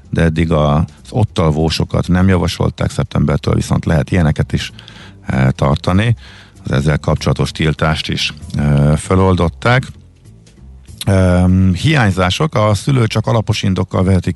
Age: 50-69